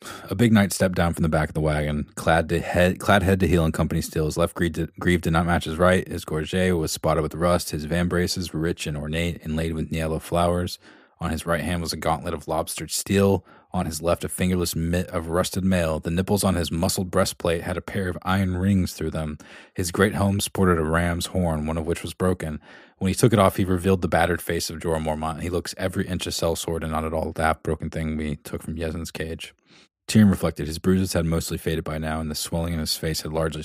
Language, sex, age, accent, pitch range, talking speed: English, male, 20-39, American, 80-90 Hz, 245 wpm